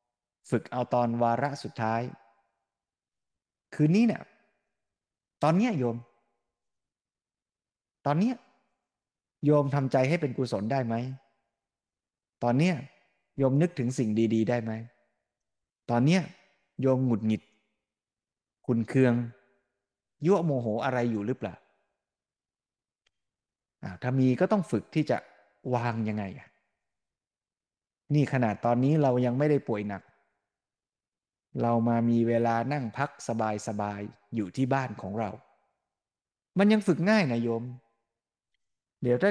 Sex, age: male, 20-39